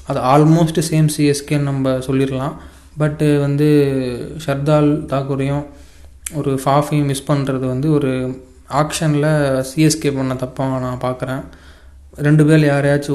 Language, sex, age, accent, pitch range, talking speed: Tamil, male, 20-39, native, 130-145 Hz, 115 wpm